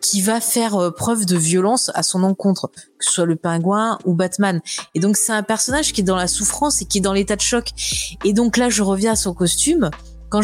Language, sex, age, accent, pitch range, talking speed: French, female, 20-39, French, 180-225 Hz, 240 wpm